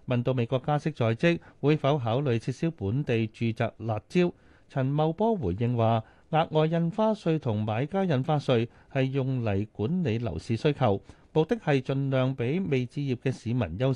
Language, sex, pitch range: Chinese, male, 110-155 Hz